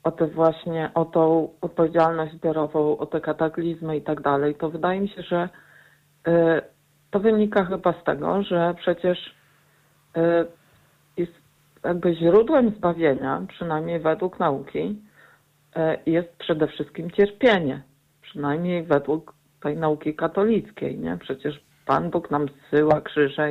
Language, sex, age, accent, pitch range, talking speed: Polish, female, 50-69, native, 150-175 Hz, 130 wpm